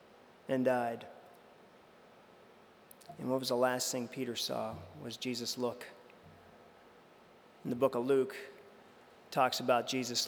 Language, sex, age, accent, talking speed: English, male, 40-59, American, 125 wpm